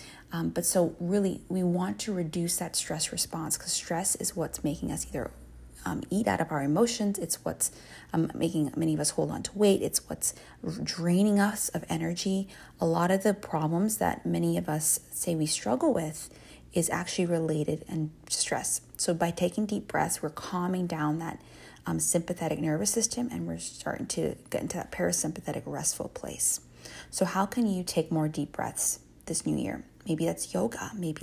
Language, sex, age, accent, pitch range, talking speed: English, female, 30-49, American, 155-195 Hz, 185 wpm